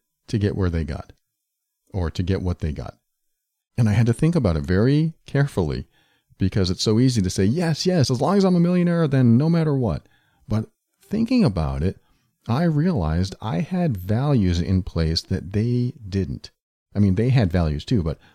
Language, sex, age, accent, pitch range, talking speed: English, male, 40-59, American, 90-130 Hz, 195 wpm